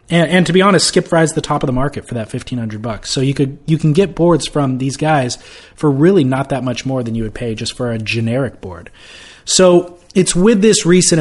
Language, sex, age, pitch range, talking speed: English, male, 30-49, 120-150 Hz, 245 wpm